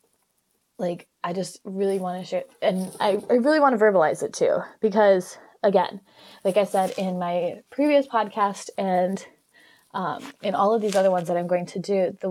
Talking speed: 190 wpm